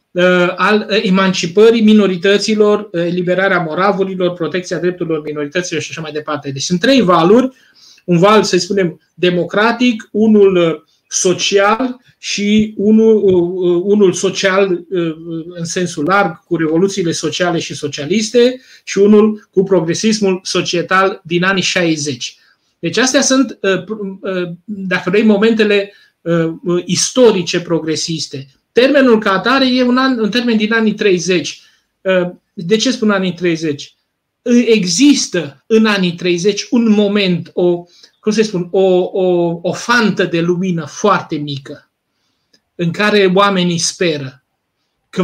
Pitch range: 170-210 Hz